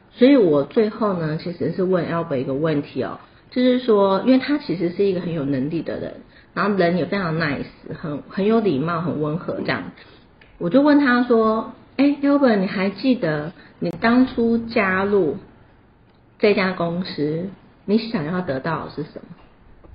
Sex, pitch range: female, 165-230 Hz